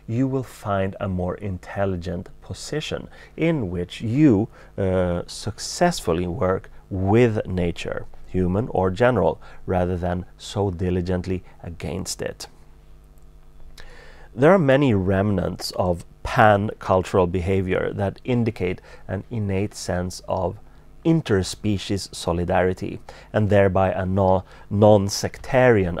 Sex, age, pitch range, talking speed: male, 30-49, 90-110 Hz, 105 wpm